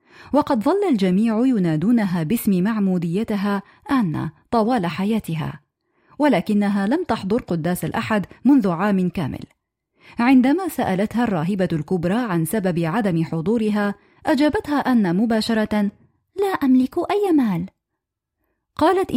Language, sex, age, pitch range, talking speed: Arabic, female, 30-49, 190-255 Hz, 105 wpm